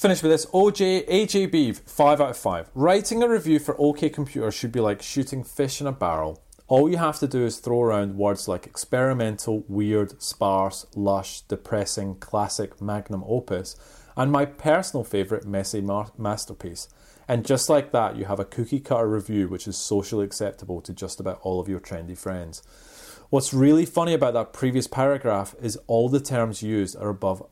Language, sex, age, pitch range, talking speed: English, male, 30-49, 100-135 Hz, 185 wpm